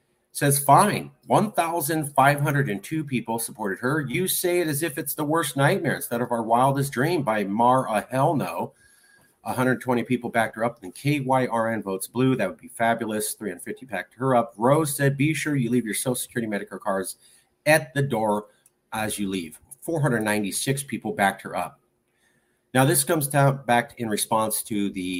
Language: English